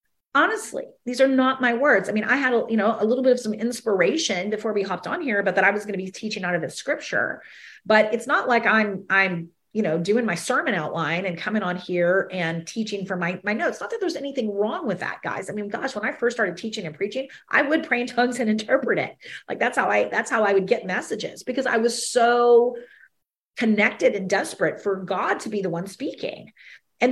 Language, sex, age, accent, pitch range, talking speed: English, female, 30-49, American, 210-270 Hz, 240 wpm